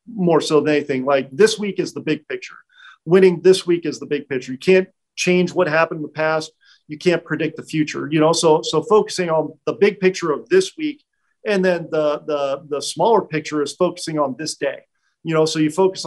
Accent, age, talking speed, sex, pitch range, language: American, 40-59, 225 wpm, male, 155-185 Hz, English